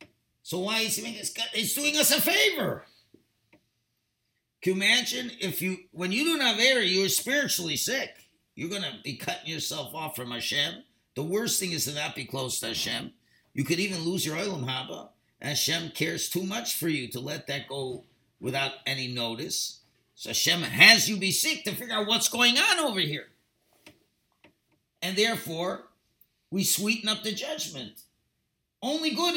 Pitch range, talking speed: 125-210 Hz, 175 wpm